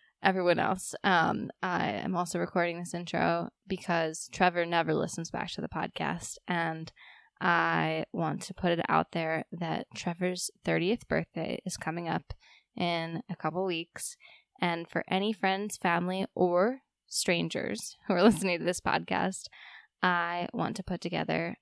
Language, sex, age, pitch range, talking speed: English, female, 10-29, 170-195 Hz, 150 wpm